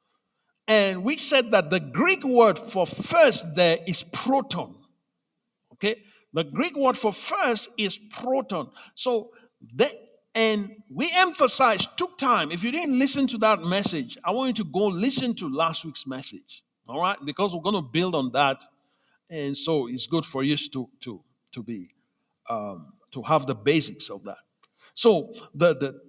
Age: 50-69